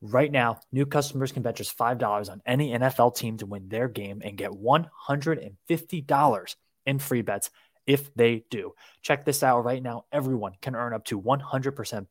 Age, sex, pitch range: 20-39, male, 110-135 Hz